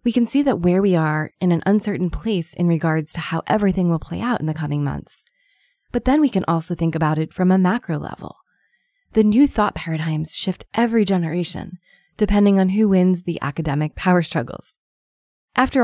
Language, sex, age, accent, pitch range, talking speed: English, female, 20-39, American, 170-235 Hz, 195 wpm